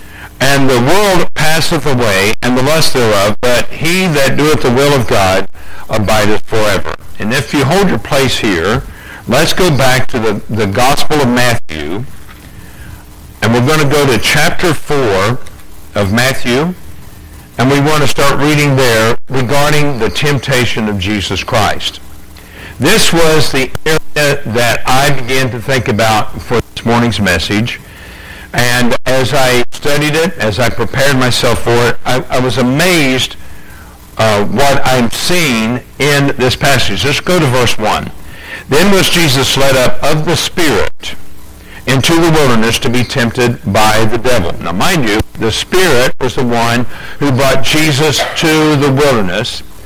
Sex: male